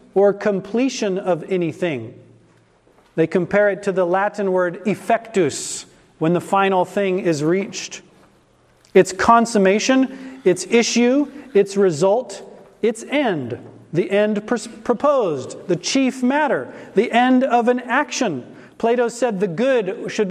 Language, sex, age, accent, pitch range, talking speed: English, male, 40-59, American, 195-270 Hz, 125 wpm